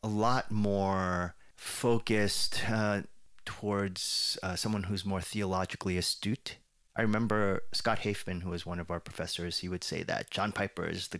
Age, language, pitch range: 30-49, English, 90-105 Hz